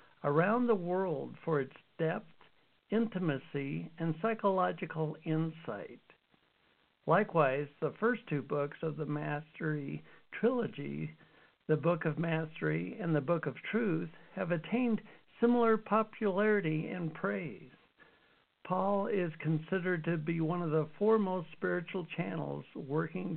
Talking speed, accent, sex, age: 120 wpm, American, male, 60-79